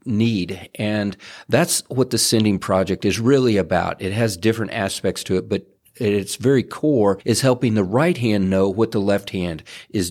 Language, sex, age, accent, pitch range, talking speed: English, male, 40-59, American, 105-125 Hz, 190 wpm